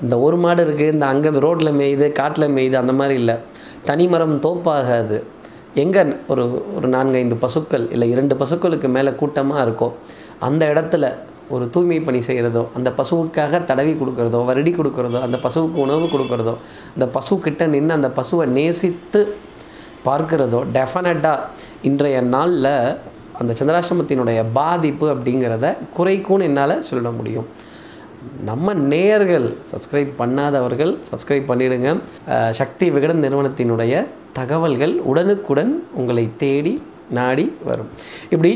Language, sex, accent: Tamil, male, native